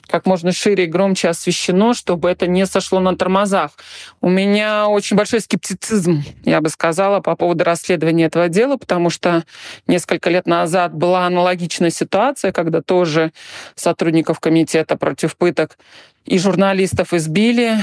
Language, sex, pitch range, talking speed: Russian, male, 170-195 Hz, 140 wpm